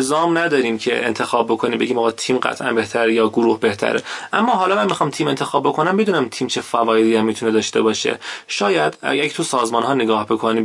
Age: 20-39